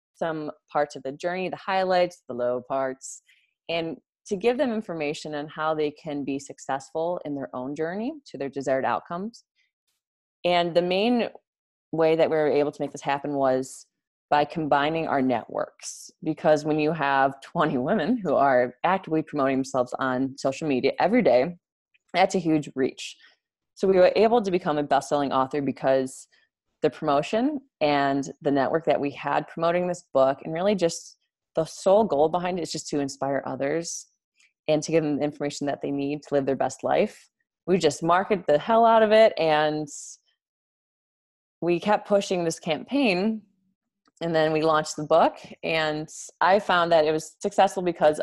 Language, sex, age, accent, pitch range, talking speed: English, female, 20-39, American, 140-180 Hz, 180 wpm